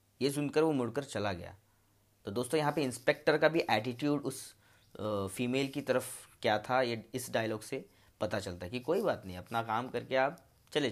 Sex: male